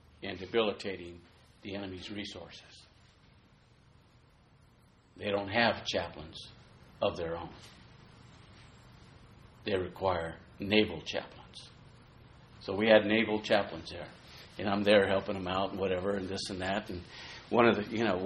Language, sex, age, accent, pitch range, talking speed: English, male, 50-69, American, 95-115 Hz, 130 wpm